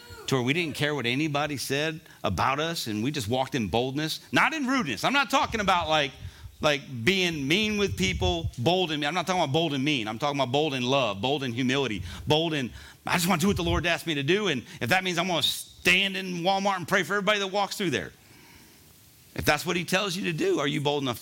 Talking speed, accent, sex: 255 wpm, American, male